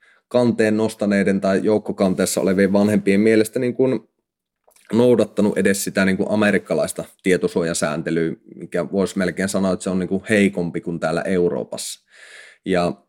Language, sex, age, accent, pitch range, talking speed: Finnish, male, 30-49, native, 90-105 Hz, 140 wpm